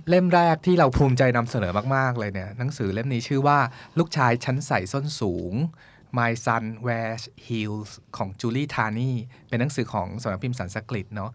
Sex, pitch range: male, 115-140 Hz